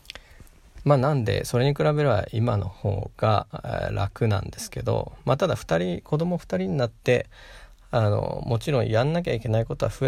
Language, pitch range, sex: Japanese, 100-135 Hz, male